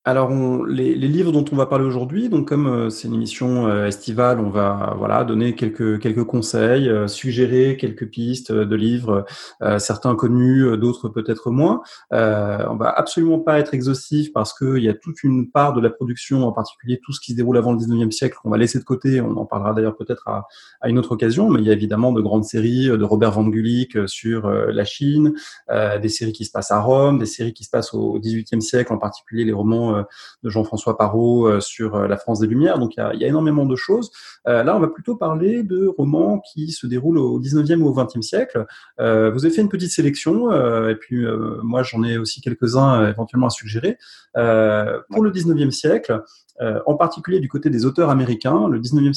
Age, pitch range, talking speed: 30-49, 110-135 Hz, 225 wpm